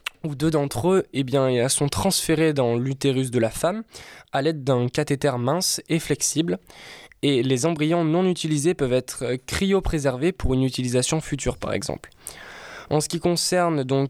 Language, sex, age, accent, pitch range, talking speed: French, male, 20-39, French, 130-160 Hz, 155 wpm